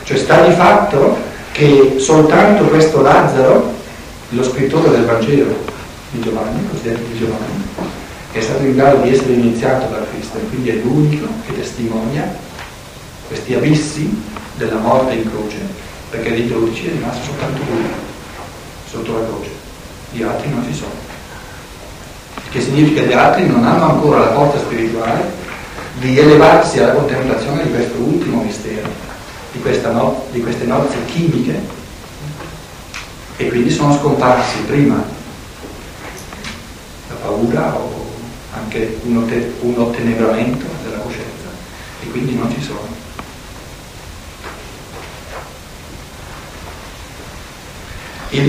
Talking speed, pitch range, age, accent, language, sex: 120 wpm, 115-145 Hz, 60-79, native, Italian, male